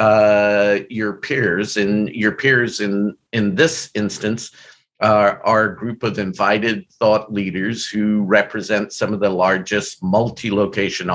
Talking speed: 135 wpm